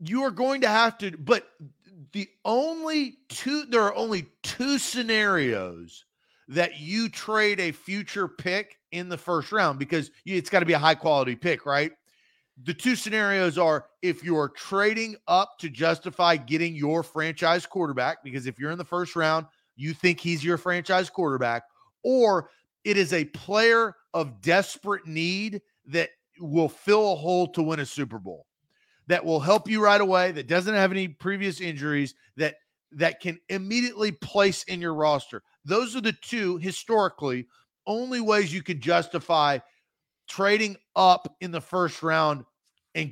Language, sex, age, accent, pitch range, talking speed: English, male, 40-59, American, 160-210 Hz, 165 wpm